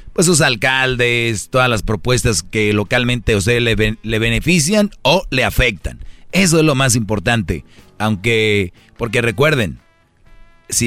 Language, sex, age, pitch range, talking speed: Spanish, male, 40-59, 110-135 Hz, 140 wpm